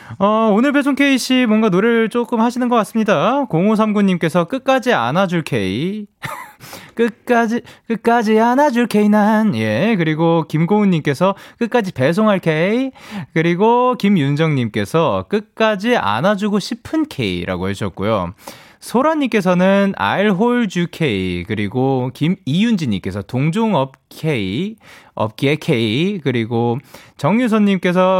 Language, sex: Korean, male